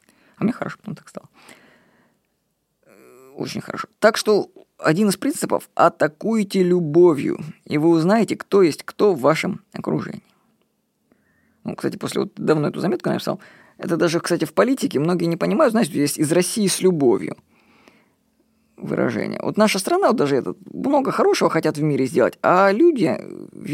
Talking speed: 160 wpm